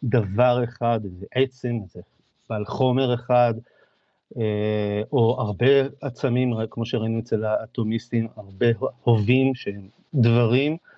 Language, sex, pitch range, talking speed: Hebrew, male, 110-130 Hz, 110 wpm